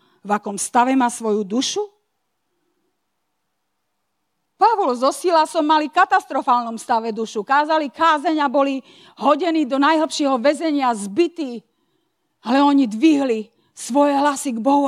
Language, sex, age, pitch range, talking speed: Slovak, female, 40-59, 235-305 Hz, 115 wpm